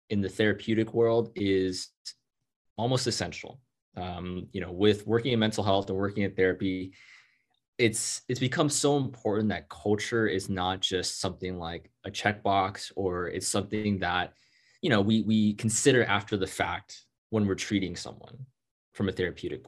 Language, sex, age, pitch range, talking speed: English, male, 20-39, 95-115 Hz, 160 wpm